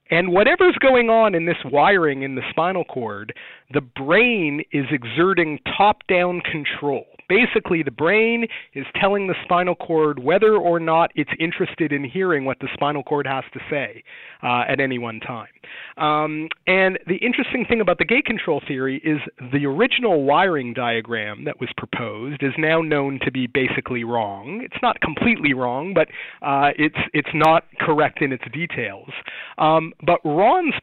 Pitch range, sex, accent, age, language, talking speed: 135-180 Hz, male, American, 40-59, English, 165 wpm